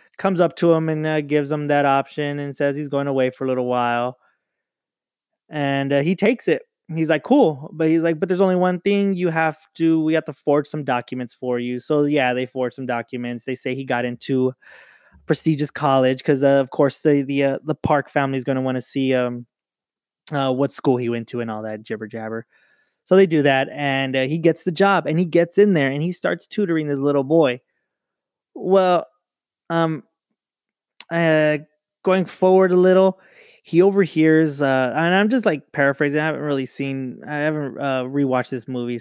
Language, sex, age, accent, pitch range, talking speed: English, male, 20-39, American, 125-165 Hz, 205 wpm